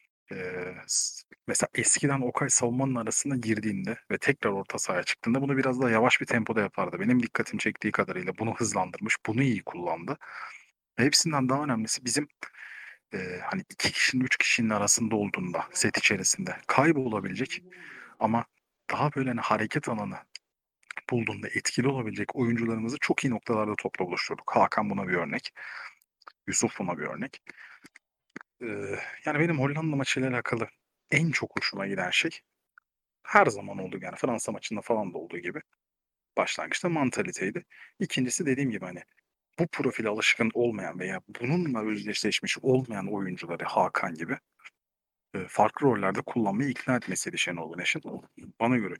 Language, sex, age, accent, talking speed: Turkish, male, 40-59, native, 135 wpm